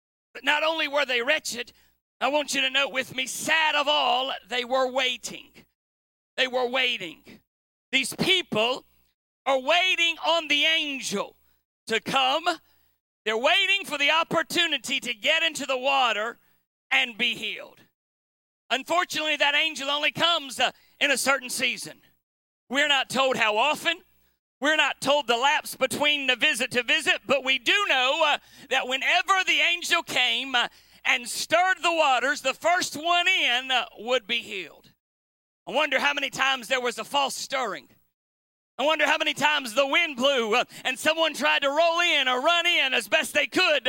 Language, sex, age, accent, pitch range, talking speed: English, male, 40-59, American, 245-315 Hz, 165 wpm